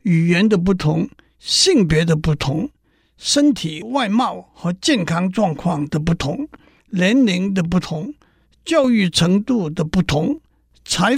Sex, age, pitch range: male, 60-79, 170-245 Hz